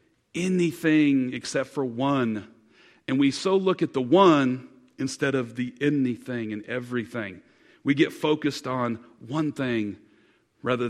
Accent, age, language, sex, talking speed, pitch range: American, 40-59, English, male, 130 wpm, 115-155 Hz